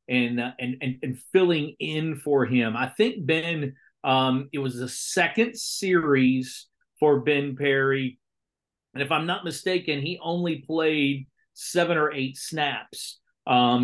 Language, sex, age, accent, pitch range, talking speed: English, male, 40-59, American, 130-160 Hz, 150 wpm